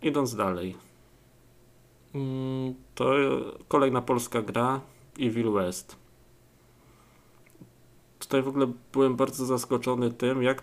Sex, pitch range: male, 115-130 Hz